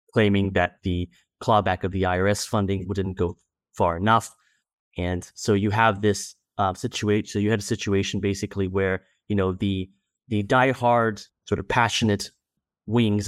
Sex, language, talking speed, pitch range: male, English, 160 wpm, 95-110 Hz